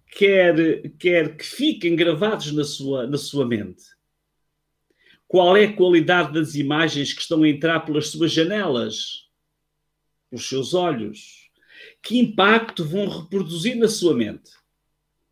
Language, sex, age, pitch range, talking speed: Portuguese, male, 50-69, 155-210 Hz, 125 wpm